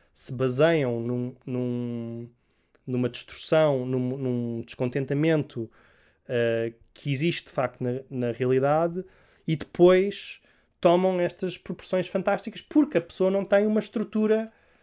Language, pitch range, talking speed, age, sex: English, 125-185 Hz, 120 wpm, 20-39, male